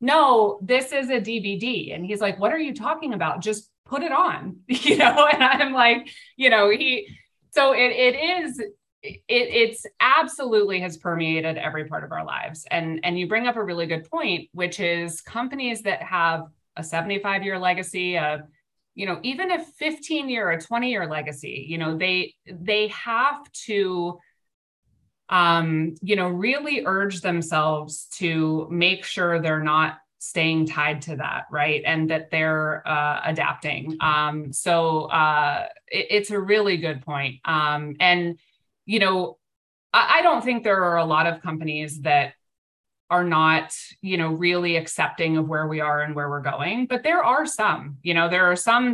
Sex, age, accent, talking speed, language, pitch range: female, 20-39, American, 175 wpm, English, 160-220 Hz